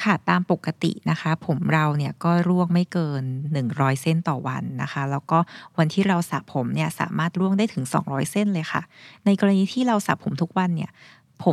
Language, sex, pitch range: Thai, female, 155-195 Hz